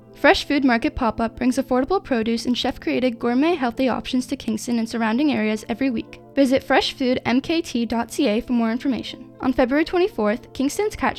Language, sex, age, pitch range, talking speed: English, female, 10-29, 230-280 Hz, 155 wpm